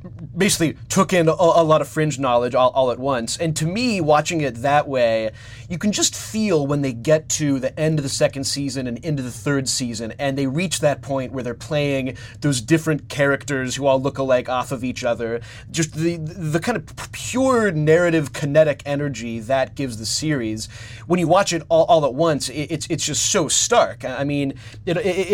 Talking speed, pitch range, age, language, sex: 210 wpm, 120-155 Hz, 30-49, English, male